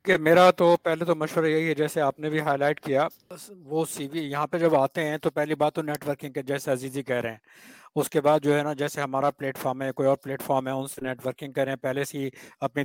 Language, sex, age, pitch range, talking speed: Urdu, male, 60-79, 145-175 Hz, 270 wpm